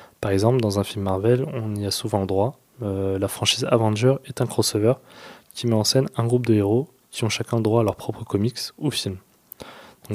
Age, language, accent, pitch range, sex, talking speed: 20-39, French, French, 105-125 Hz, male, 220 wpm